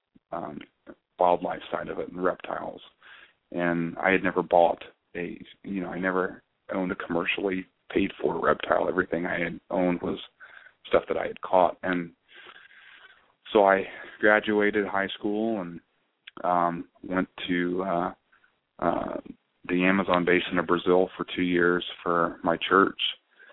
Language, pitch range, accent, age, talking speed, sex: English, 85-95 Hz, American, 30-49, 145 wpm, male